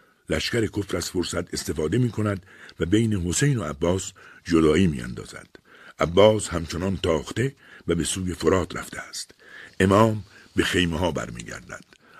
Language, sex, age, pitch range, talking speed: Persian, male, 60-79, 80-105 Hz, 140 wpm